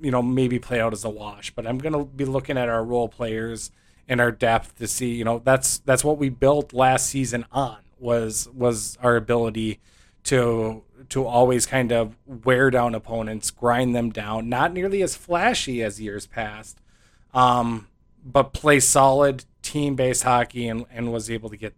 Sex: male